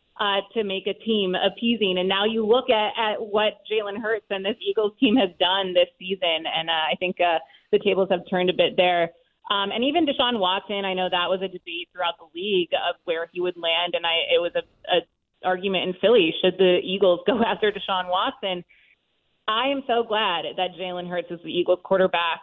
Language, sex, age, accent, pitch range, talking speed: English, female, 30-49, American, 180-220 Hz, 215 wpm